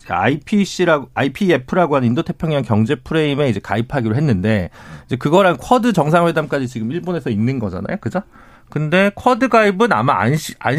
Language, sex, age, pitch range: Korean, male, 40-59, 115-185 Hz